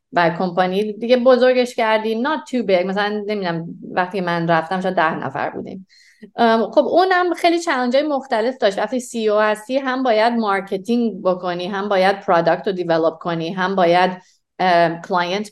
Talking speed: 160 wpm